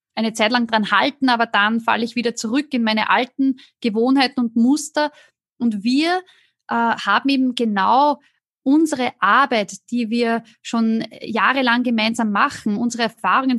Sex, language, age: female, German, 20-39